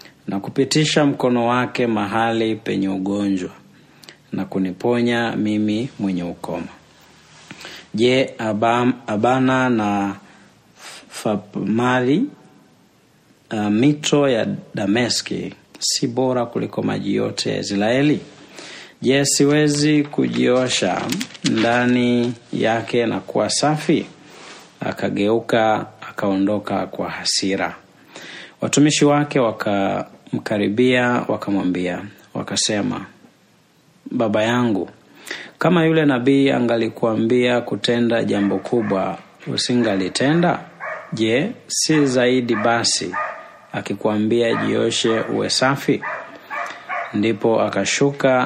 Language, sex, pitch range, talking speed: Swahili, male, 100-125 Hz, 80 wpm